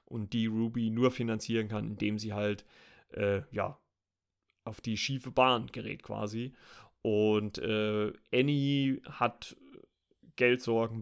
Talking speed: 120 wpm